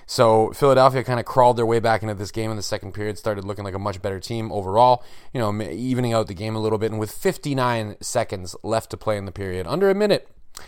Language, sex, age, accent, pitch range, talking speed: English, male, 30-49, American, 105-125 Hz, 255 wpm